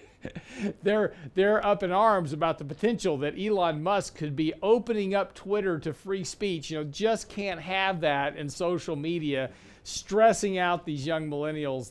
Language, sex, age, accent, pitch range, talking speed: English, male, 50-69, American, 135-170 Hz, 165 wpm